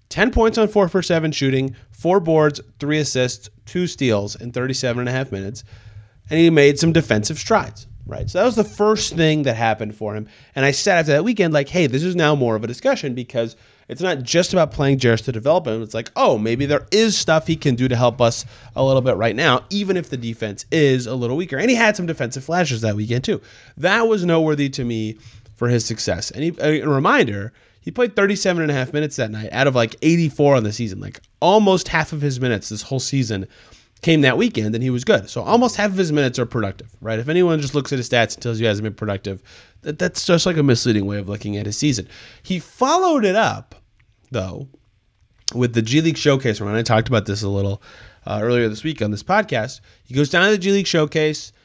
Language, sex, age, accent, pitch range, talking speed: English, male, 30-49, American, 110-160 Hz, 240 wpm